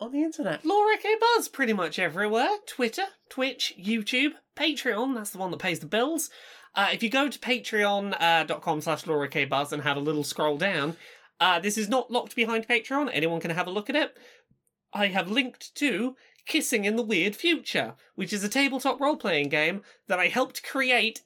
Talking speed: 200 wpm